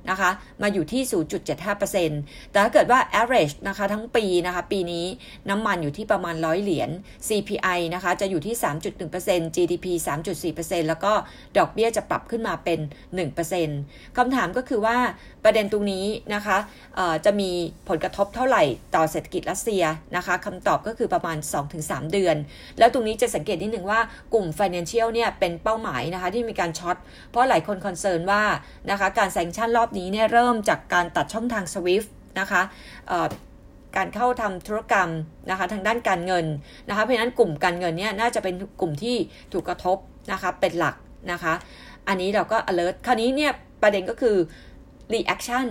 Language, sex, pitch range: Thai, female, 170-220 Hz